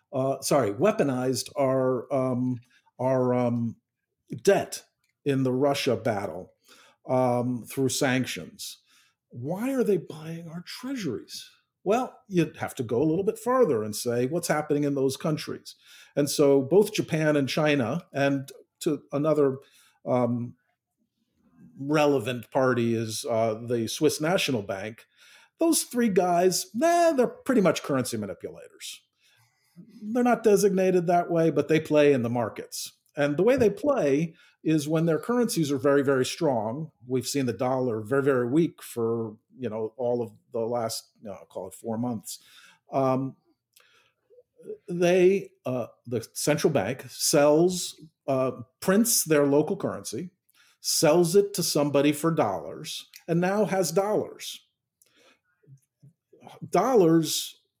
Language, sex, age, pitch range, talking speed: English, male, 50-69, 130-180 Hz, 135 wpm